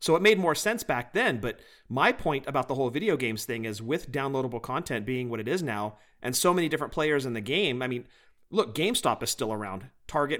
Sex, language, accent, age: male, English, American, 40-59